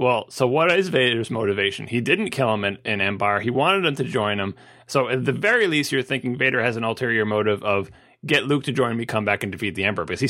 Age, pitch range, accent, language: 30-49, 110-140 Hz, American, English